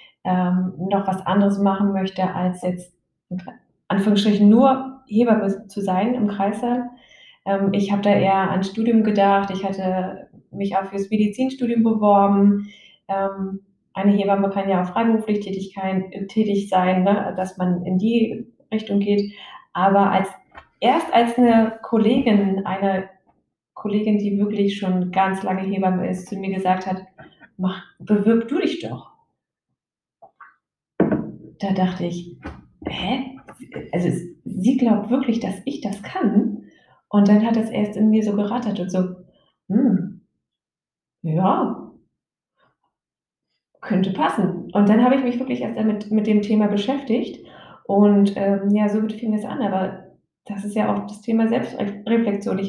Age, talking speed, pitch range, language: 20-39, 145 wpm, 195-225 Hz, German